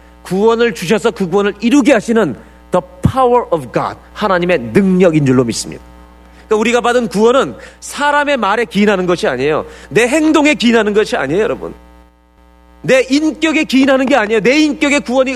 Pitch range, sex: 155-255 Hz, male